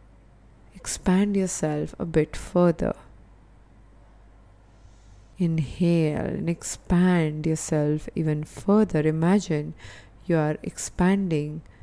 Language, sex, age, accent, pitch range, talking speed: English, female, 20-39, Indian, 105-180 Hz, 75 wpm